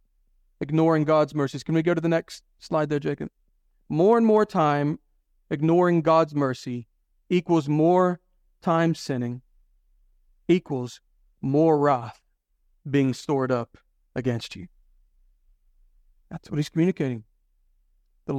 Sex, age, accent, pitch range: male, 40-59, American, 130-205 Hz